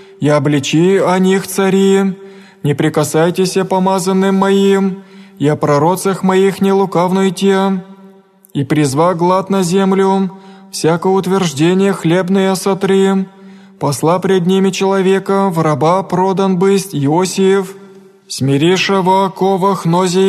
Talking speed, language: 110 wpm, Greek